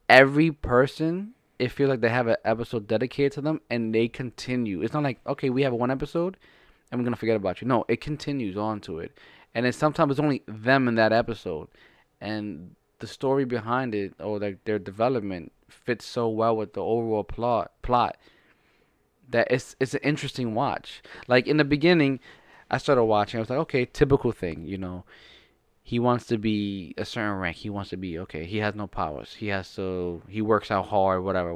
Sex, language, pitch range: male, English, 110-140 Hz